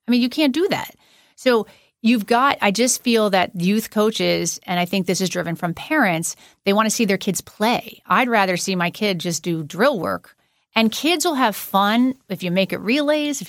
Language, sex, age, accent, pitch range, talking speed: English, female, 40-59, American, 180-220 Hz, 220 wpm